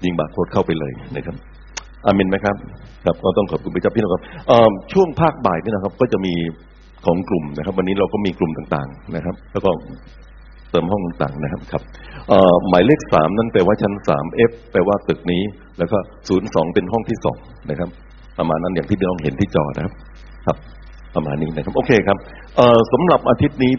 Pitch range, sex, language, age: 85-110 Hz, male, Thai, 60-79